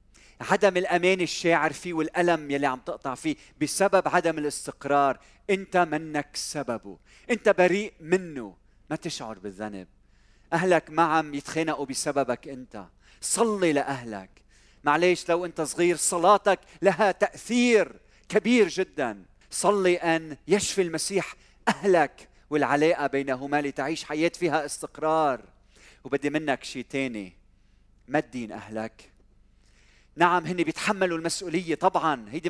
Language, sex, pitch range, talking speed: Arabic, male, 120-175 Hz, 115 wpm